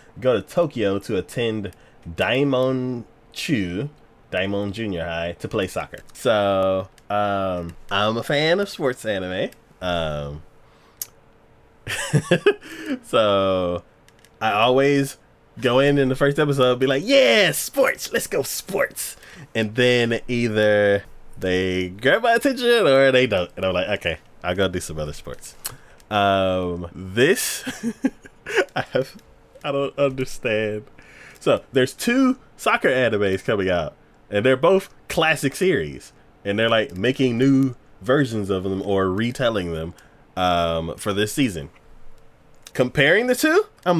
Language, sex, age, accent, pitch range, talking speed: English, male, 20-39, American, 95-150 Hz, 130 wpm